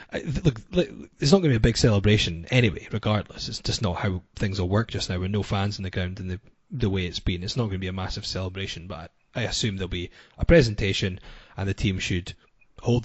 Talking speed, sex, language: 240 wpm, male, English